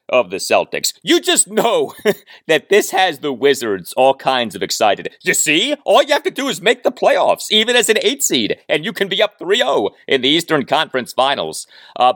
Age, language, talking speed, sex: 40-59, English, 210 wpm, male